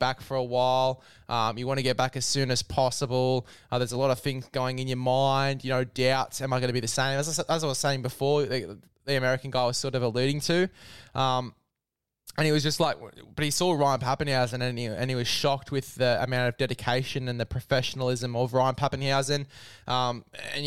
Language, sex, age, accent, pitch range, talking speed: English, male, 20-39, Australian, 120-140 Hz, 225 wpm